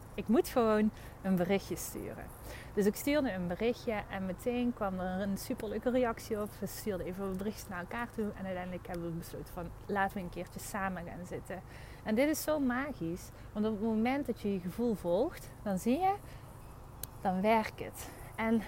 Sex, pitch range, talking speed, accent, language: female, 180-230 Hz, 195 wpm, Dutch, Dutch